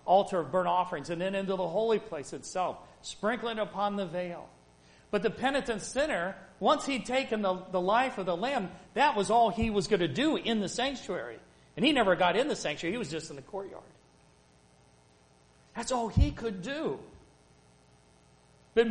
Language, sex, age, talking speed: English, male, 40-59, 185 wpm